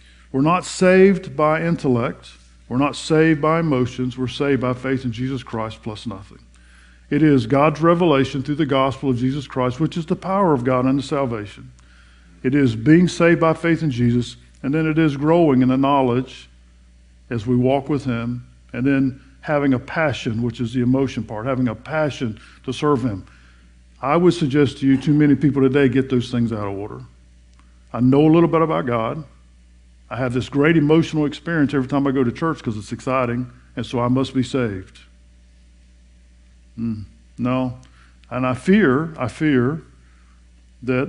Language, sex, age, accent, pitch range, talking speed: English, male, 50-69, American, 100-145 Hz, 185 wpm